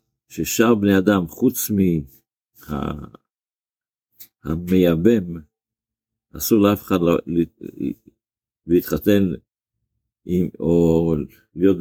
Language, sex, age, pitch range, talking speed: Hebrew, male, 50-69, 85-110 Hz, 70 wpm